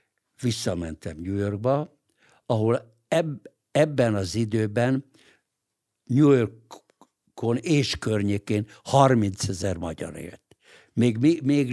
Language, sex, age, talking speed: English, male, 60-79, 90 wpm